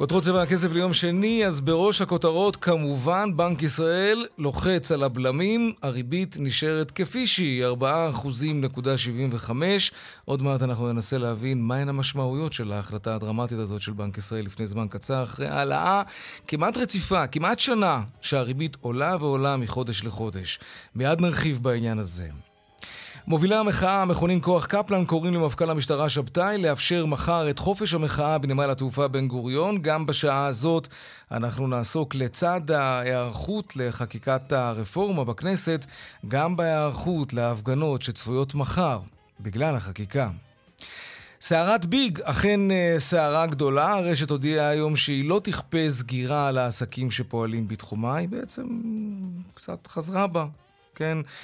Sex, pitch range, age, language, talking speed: male, 125-175 Hz, 30-49, Hebrew, 125 wpm